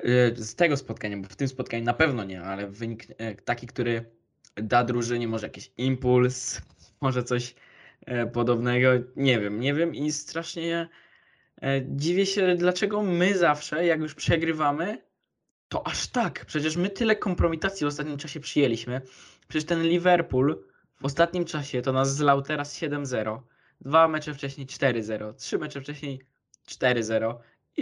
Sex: male